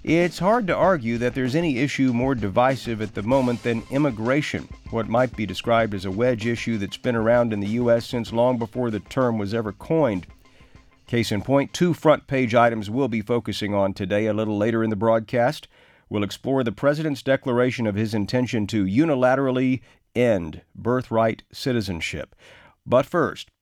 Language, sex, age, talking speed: English, male, 50-69, 175 wpm